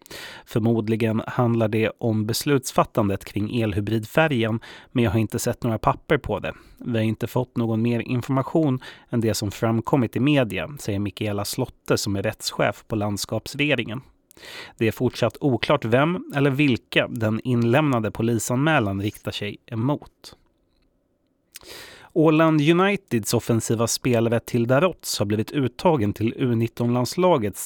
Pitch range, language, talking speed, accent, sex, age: 110-130 Hz, Swedish, 130 wpm, native, male, 30-49